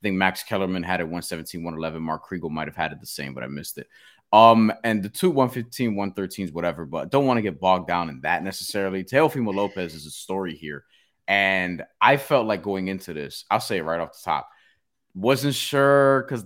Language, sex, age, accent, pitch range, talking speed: English, male, 20-39, American, 95-125 Hz, 220 wpm